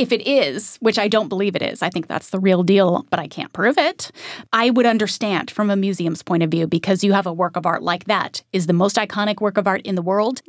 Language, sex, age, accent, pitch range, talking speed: English, female, 30-49, American, 185-240 Hz, 275 wpm